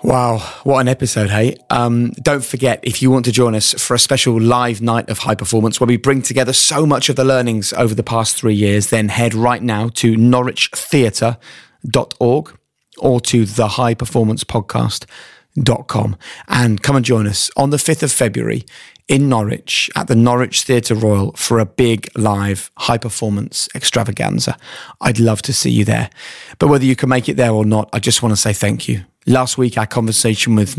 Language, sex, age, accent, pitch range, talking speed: English, male, 30-49, British, 110-130 Hz, 185 wpm